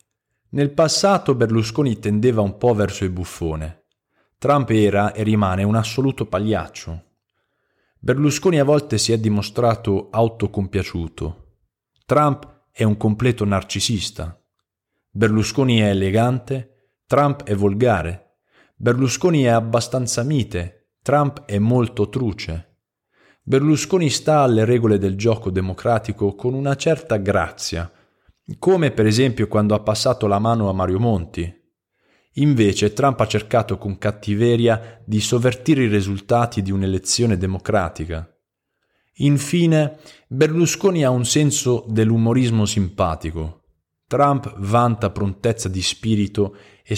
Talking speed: 115 wpm